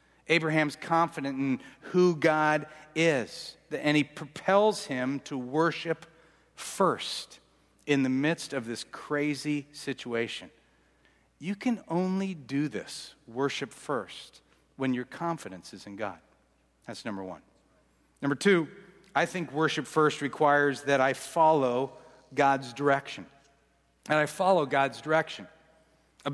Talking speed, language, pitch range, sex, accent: 125 wpm, English, 135-170 Hz, male, American